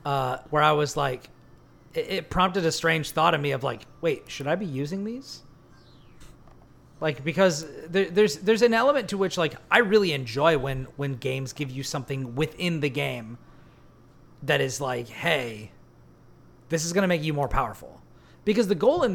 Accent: American